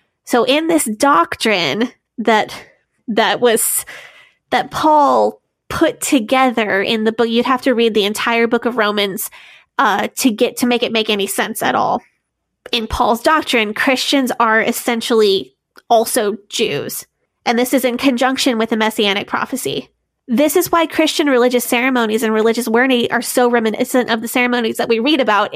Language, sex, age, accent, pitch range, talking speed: English, female, 20-39, American, 225-260 Hz, 165 wpm